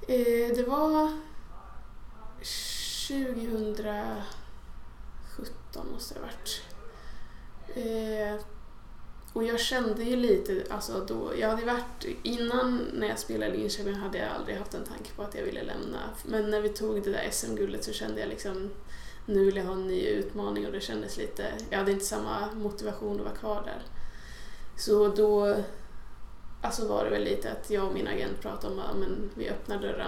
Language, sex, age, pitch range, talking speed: Swedish, female, 20-39, 195-235 Hz, 165 wpm